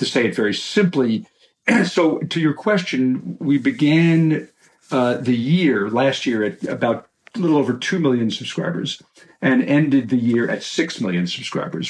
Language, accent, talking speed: English, American, 160 wpm